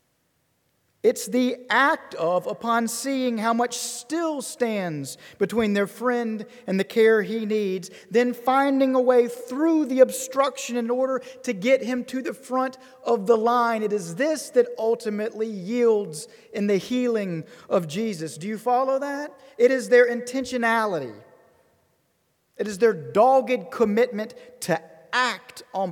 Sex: male